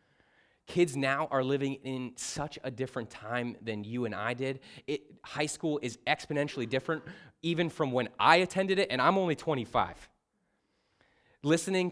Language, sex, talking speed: English, male, 150 wpm